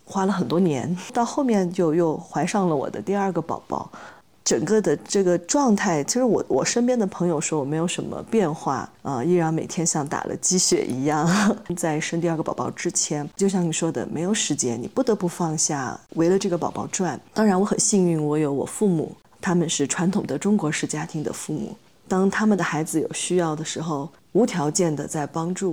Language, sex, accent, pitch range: Chinese, female, native, 150-185 Hz